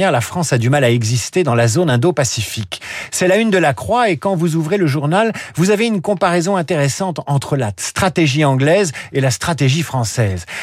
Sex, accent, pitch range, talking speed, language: male, French, 125-180 Hz, 205 wpm, French